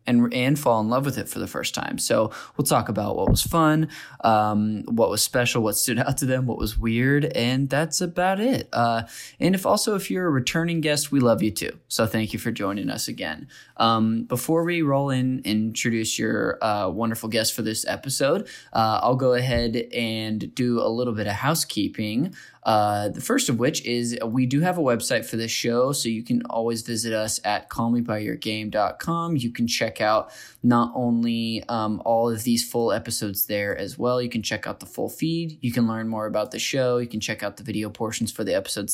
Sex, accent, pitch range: male, American, 110-135 Hz